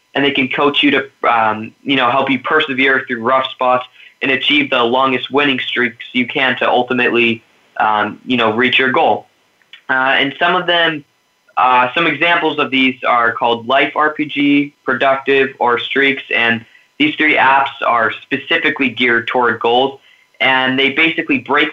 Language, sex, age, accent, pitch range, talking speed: English, male, 20-39, American, 125-140 Hz, 170 wpm